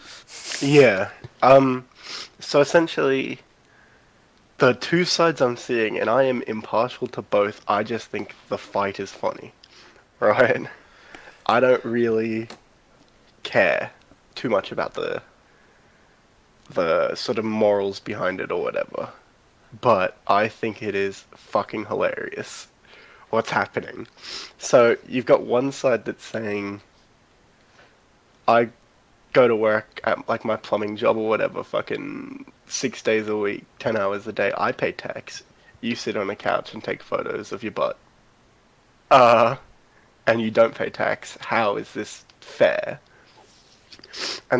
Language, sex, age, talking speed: English, male, 20-39, 135 wpm